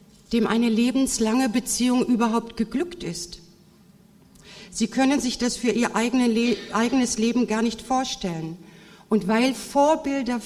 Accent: German